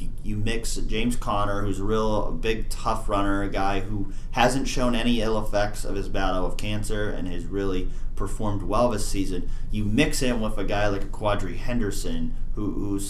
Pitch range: 95-115 Hz